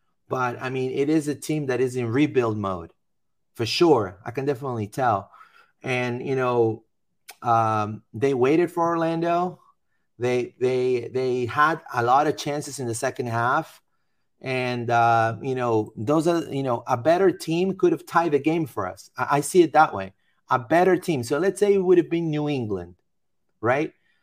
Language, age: English, 30-49